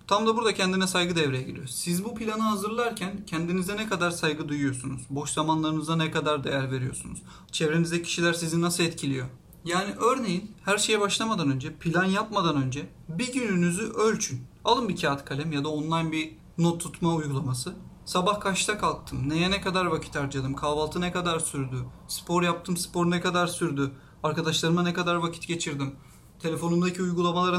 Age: 40-59